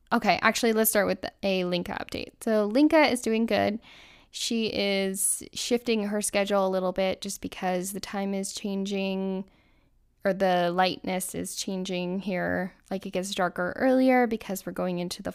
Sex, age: female, 10-29